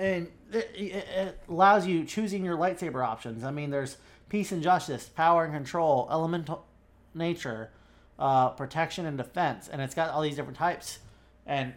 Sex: male